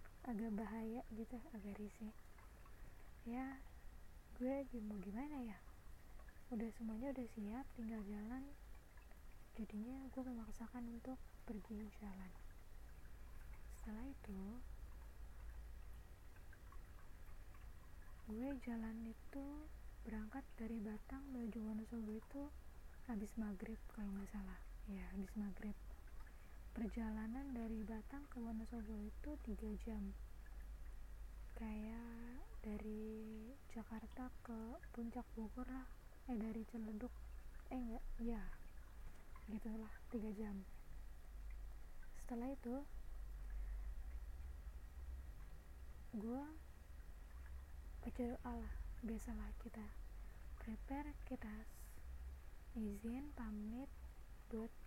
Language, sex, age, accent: Indonesian, female, 20-39, native